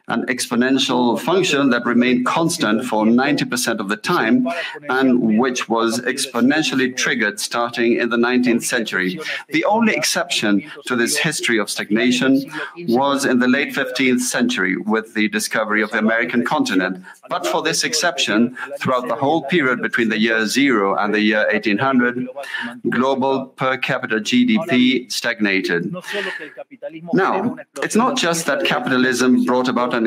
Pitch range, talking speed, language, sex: 115-135 Hz, 145 wpm, English, male